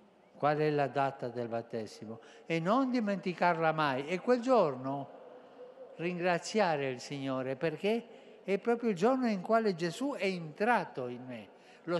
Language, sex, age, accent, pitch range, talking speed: Italian, male, 50-69, native, 145-200 Hz, 145 wpm